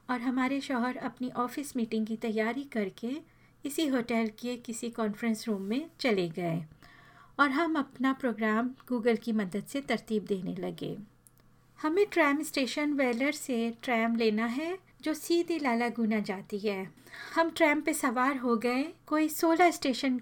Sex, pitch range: female, 225-270 Hz